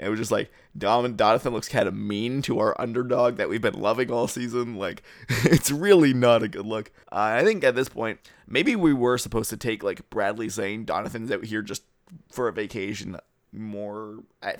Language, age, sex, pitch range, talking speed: English, 20-39, male, 105-125 Hz, 200 wpm